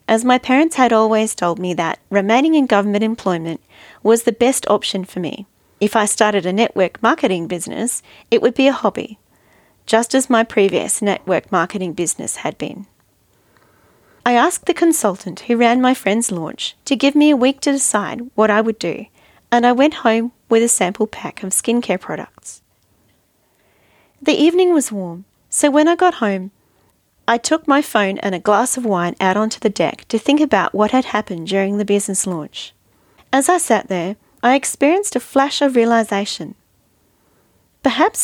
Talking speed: 175 wpm